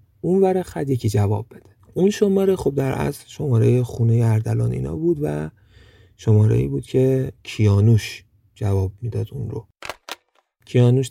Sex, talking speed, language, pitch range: male, 145 wpm, Persian, 110-135 Hz